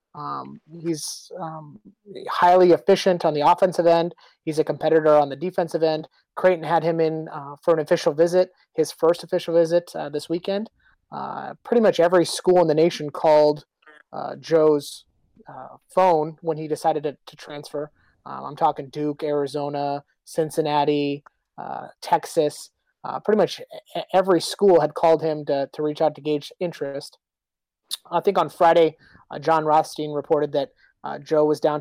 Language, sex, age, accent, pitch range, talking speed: English, male, 30-49, American, 145-165 Hz, 165 wpm